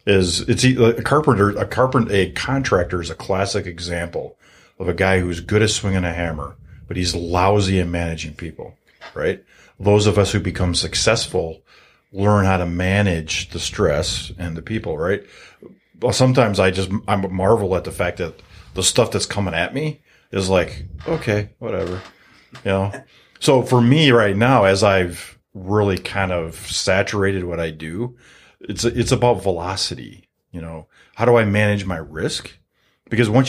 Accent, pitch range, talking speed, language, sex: American, 90-115 Hz, 170 wpm, English, male